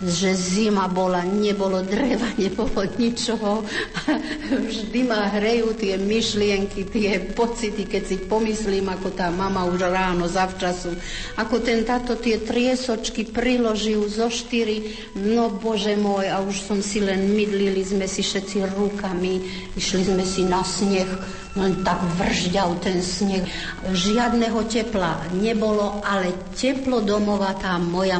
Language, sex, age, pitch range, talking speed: Slovak, female, 60-79, 180-215 Hz, 130 wpm